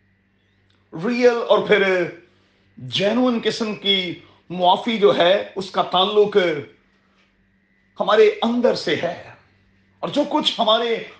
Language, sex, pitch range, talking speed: Urdu, male, 160-230 Hz, 105 wpm